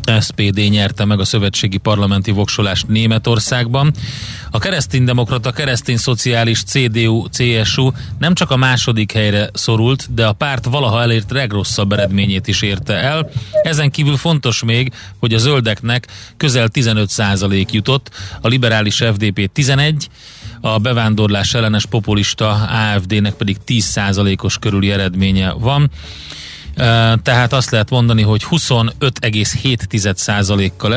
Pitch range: 100-120 Hz